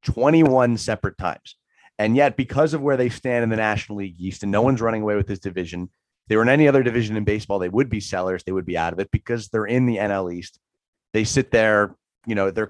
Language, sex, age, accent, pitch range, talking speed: English, male, 30-49, American, 95-115 Hz, 250 wpm